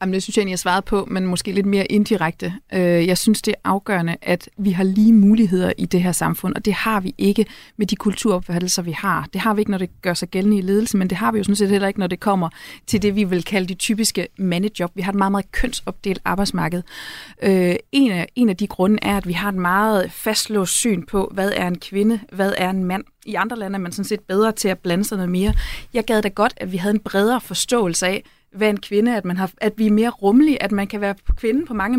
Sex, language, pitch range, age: female, Danish, 190-225 Hz, 30-49